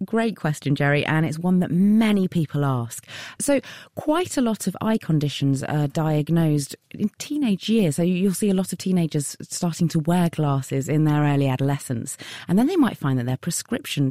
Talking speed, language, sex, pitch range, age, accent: 190 wpm, English, female, 135-185 Hz, 30-49, British